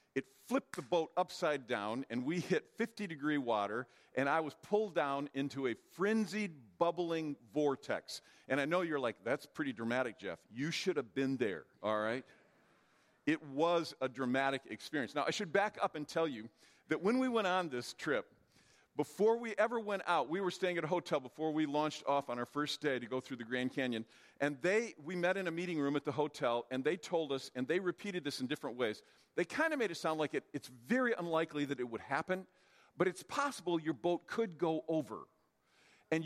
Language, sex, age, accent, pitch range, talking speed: English, male, 50-69, American, 140-200 Hz, 210 wpm